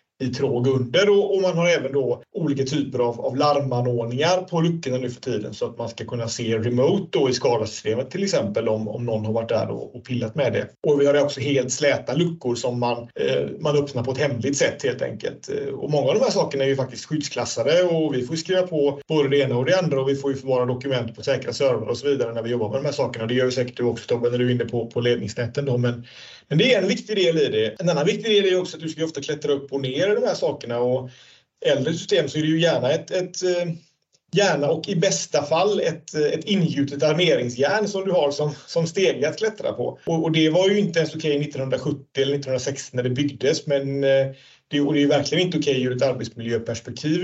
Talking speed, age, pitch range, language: 250 wpm, 30-49, 125-165 Hz, Swedish